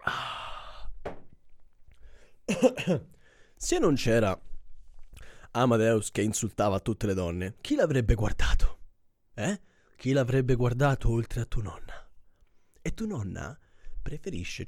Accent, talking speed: native, 100 wpm